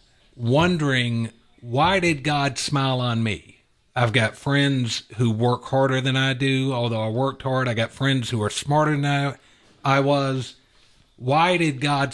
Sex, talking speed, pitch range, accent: male, 165 wpm, 120-145 Hz, American